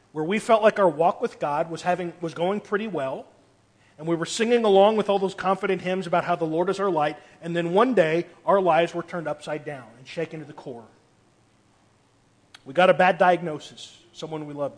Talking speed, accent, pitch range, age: 220 wpm, American, 115-180 Hz, 40-59